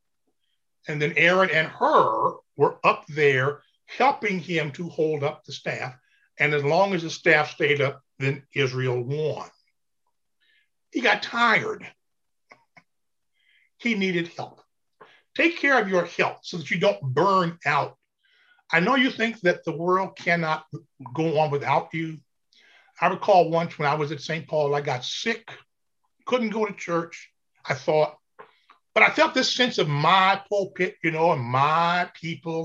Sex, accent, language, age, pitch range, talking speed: male, American, English, 50-69, 150-225 Hz, 160 wpm